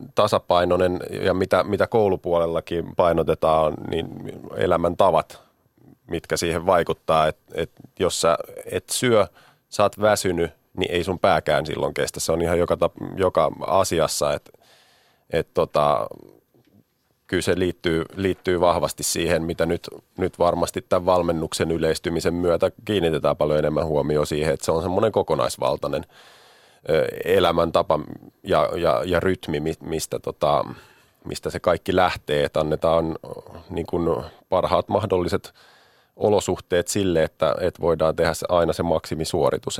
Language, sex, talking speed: Finnish, male, 130 wpm